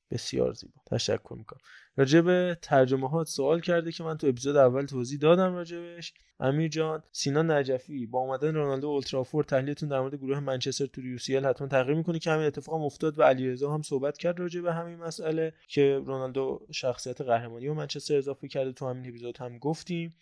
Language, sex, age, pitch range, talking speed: Persian, male, 20-39, 130-155 Hz, 185 wpm